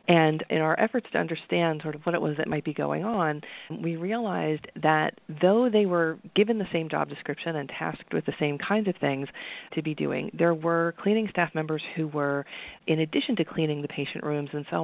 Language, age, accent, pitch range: English, 40-59, American, 150-185 Hz